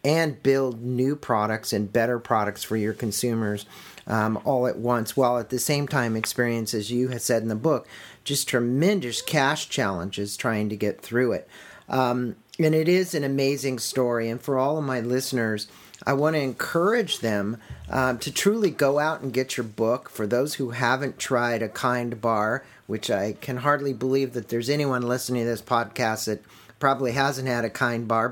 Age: 50-69